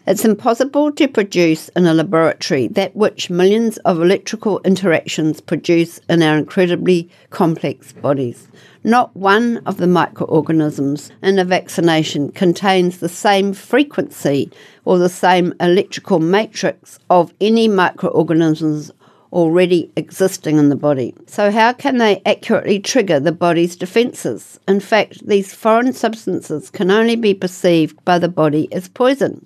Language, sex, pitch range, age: English, female, 160-205 Hz, 60-79